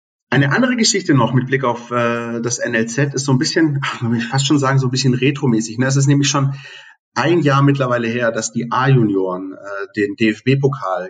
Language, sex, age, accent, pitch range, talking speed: German, male, 30-49, German, 115-140 Hz, 195 wpm